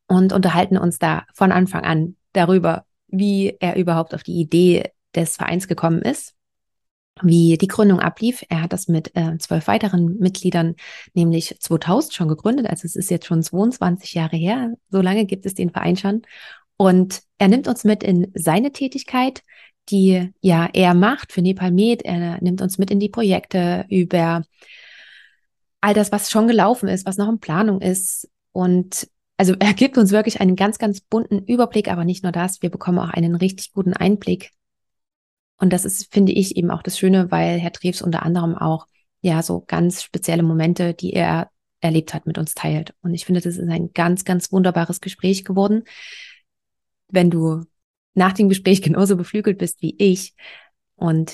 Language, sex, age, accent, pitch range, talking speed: German, female, 30-49, German, 170-200 Hz, 180 wpm